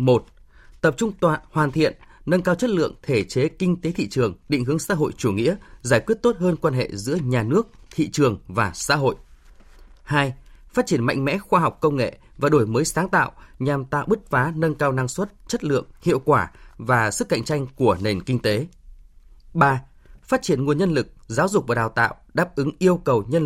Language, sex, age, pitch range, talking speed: Vietnamese, male, 20-39, 120-170 Hz, 220 wpm